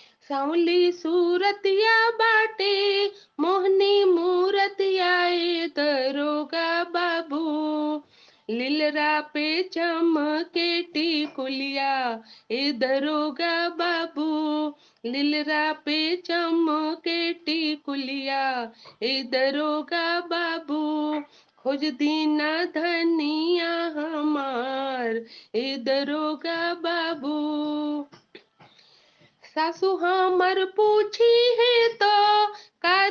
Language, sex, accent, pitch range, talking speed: Hindi, female, native, 300-360 Hz, 60 wpm